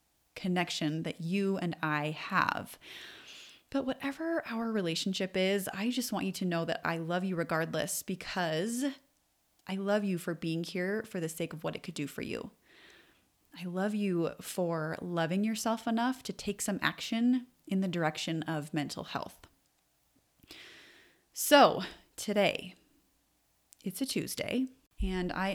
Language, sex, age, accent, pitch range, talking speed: English, female, 30-49, American, 170-215 Hz, 150 wpm